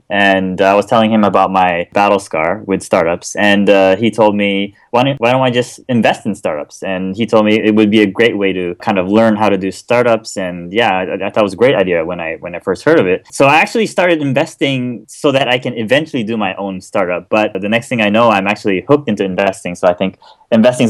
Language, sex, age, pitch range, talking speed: English, male, 20-39, 100-125 Hz, 260 wpm